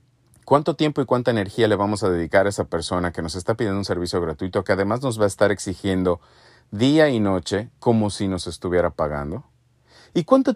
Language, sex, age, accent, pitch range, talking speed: English, male, 40-59, Mexican, 100-145 Hz, 205 wpm